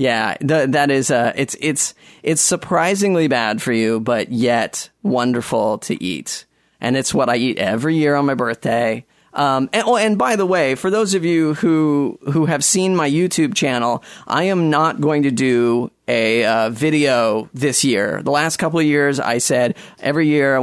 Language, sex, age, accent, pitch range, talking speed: English, male, 30-49, American, 125-160 Hz, 190 wpm